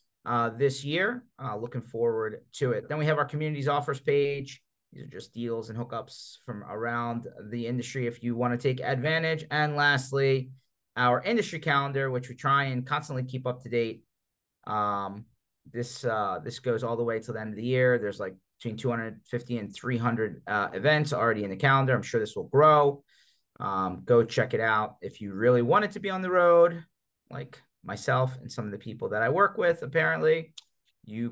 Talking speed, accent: 200 wpm, American